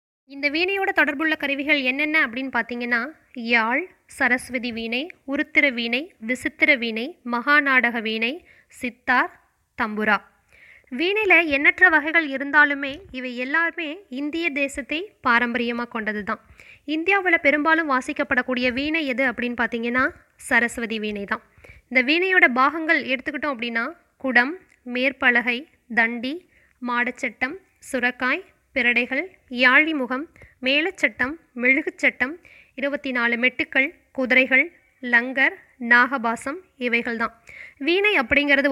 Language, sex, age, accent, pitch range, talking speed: Tamil, female, 20-39, native, 250-310 Hz, 100 wpm